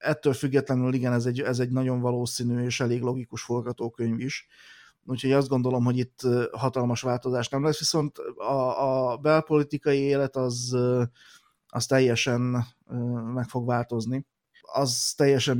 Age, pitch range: 30-49, 125-135 Hz